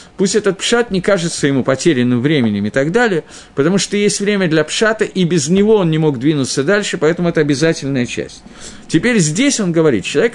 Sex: male